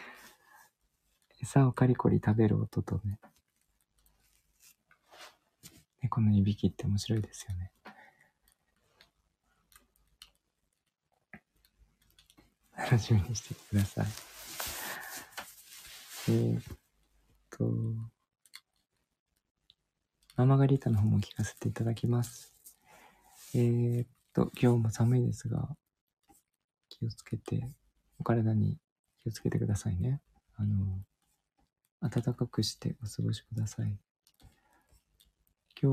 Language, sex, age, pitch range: Japanese, male, 50-69, 105-130 Hz